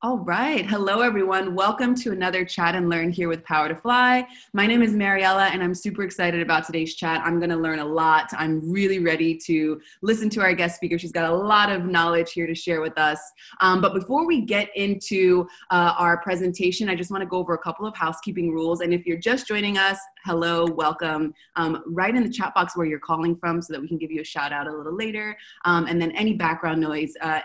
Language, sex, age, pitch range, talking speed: English, female, 20-39, 160-200 Hz, 240 wpm